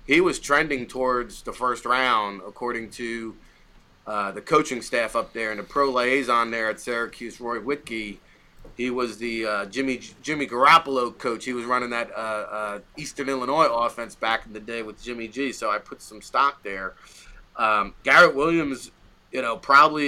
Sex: male